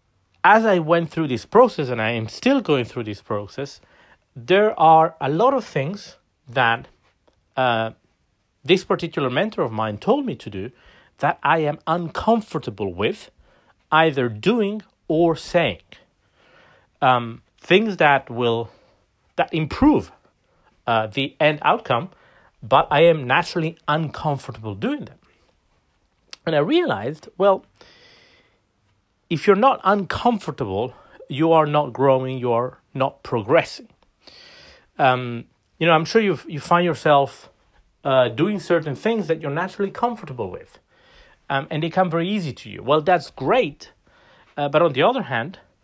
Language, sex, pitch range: English, male, 120-185 Hz